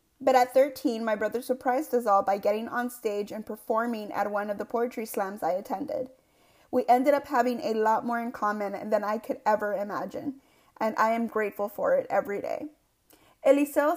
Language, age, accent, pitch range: English, 30-49, American, 215-265 Hz